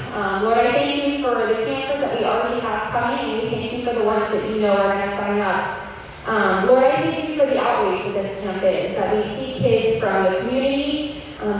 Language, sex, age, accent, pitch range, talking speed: English, female, 10-29, American, 205-250 Hz, 250 wpm